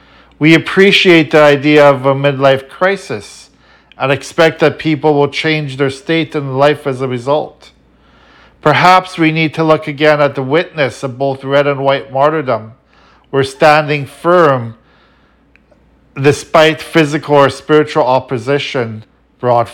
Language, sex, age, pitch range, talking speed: English, male, 50-69, 120-145 Hz, 135 wpm